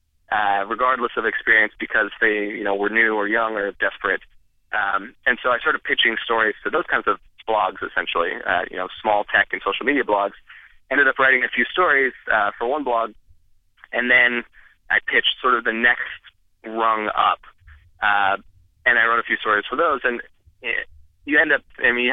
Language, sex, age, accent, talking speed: English, male, 20-39, American, 195 wpm